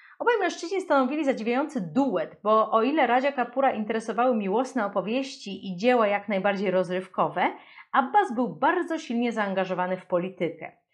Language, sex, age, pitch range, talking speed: Polish, female, 30-49, 205-275 Hz, 135 wpm